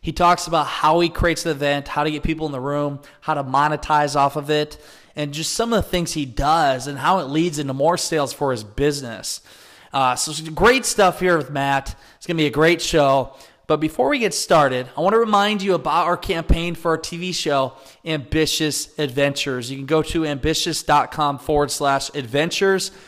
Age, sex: 20-39, male